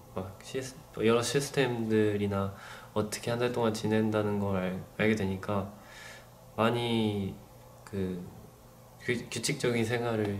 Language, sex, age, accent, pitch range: Korean, male, 20-39, native, 105-125 Hz